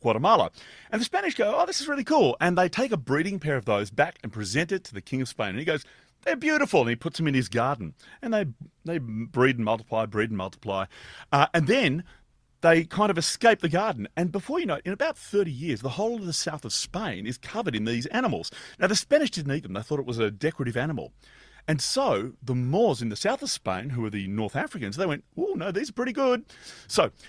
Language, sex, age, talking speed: English, male, 30-49, 250 wpm